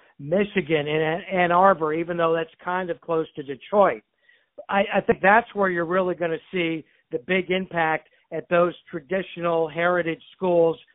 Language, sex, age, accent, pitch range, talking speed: English, male, 60-79, American, 165-190 Hz, 165 wpm